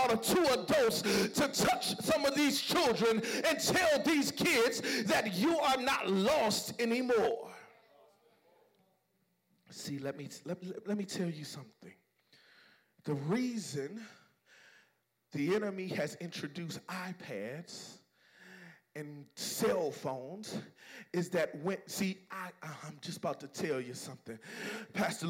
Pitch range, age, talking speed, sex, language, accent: 190-255 Hz, 40-59, 120 wpm, male, English, American